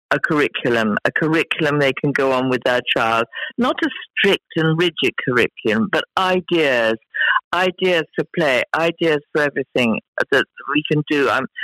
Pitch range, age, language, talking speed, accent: 140-185 Hz, 50-69, English, 155 wpm, British